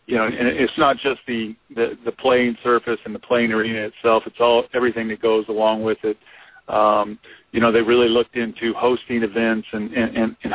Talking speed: 205 wpm